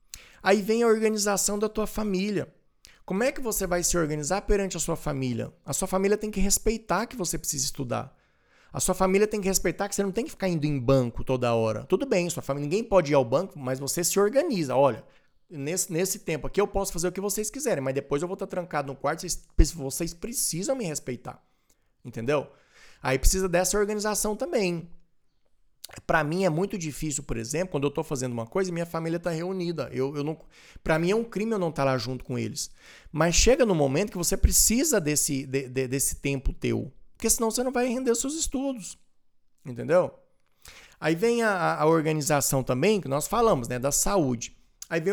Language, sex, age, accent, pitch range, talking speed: Portuguese, male, 20-39, Brazilian, 140-200 Hz, 200 wpm